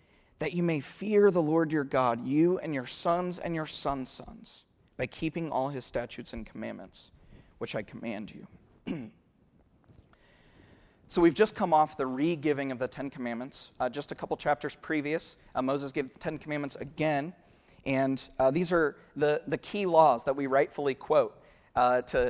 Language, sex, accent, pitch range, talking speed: English, male, American, 130-160 Hz, 175 wpm